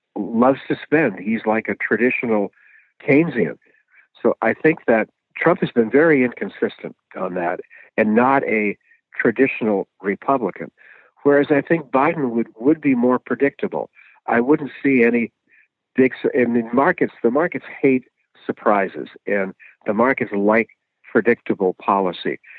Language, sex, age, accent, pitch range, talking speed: German, male, 60-79, American, 105-135 Hz, 135 wpm